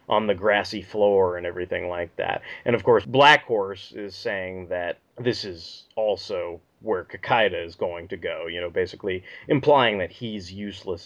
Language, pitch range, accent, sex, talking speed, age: English, 105-170 Hz, American, male, 175 wpm, 30-49